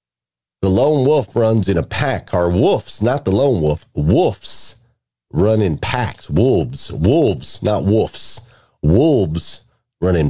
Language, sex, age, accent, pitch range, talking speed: English, male, 40-59, American, 90-130 Hz, 140 wpm